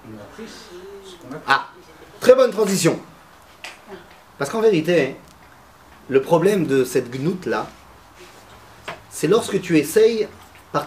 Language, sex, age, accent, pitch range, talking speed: French, male, 30-49, French, 145-225 Hz, 95 wpm